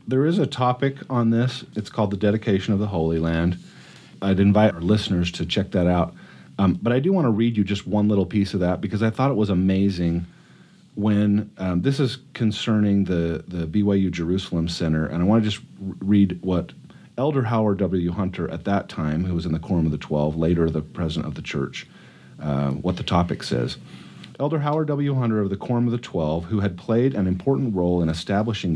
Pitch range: 85-120 Hz